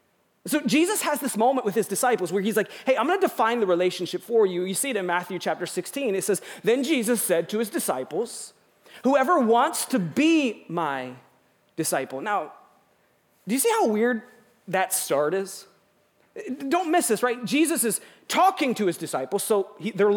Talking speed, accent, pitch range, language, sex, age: 185 wpm, American, 215-310 Hz, English, male, 30-49